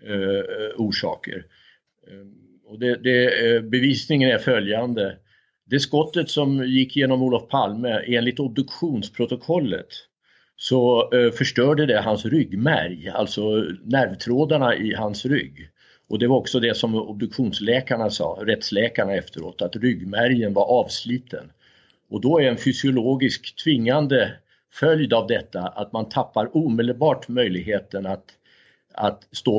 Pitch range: 110-135 Hz